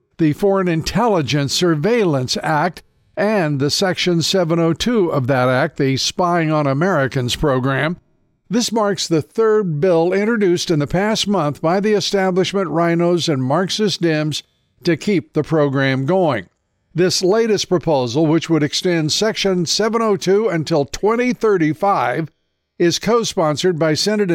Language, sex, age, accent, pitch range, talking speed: English, male, 50-69, American, 145-185 Hz, 130 wpm